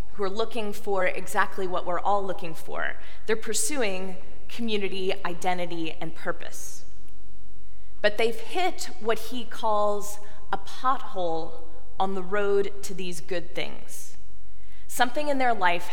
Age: 20-39